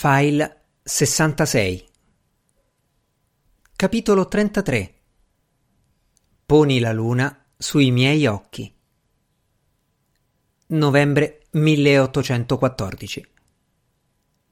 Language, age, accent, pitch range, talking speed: Italian, 50-69, native, 125-160 Hz, 50 wpm